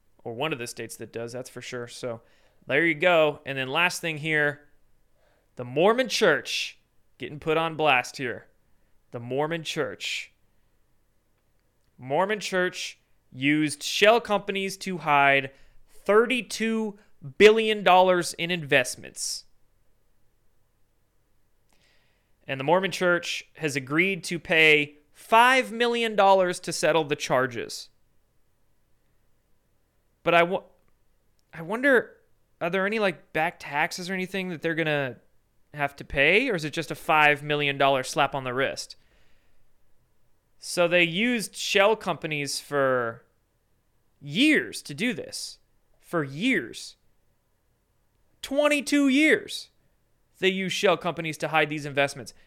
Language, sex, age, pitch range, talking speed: English, male, 30-49, 135-190 Hz, 125 wpm